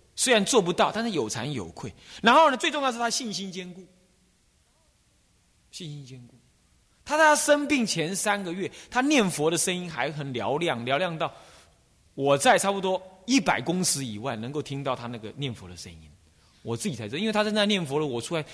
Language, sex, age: Chinese, male, 30-49